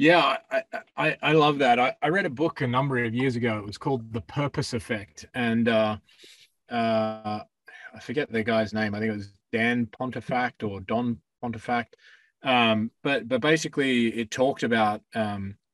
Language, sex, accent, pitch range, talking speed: English, male, Australian, 110-125 Hz, 180 wpm